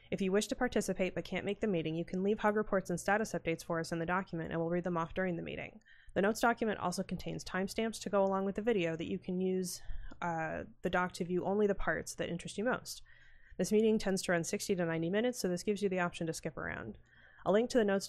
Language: English